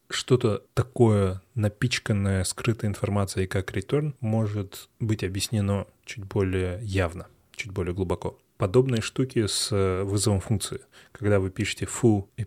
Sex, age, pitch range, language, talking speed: male, 20-39, 95-115 Hz, Russian, 125 wpm